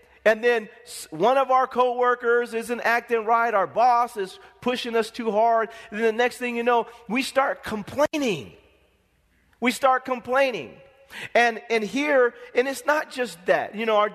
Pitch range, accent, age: 205-260 Hz, American, 40-59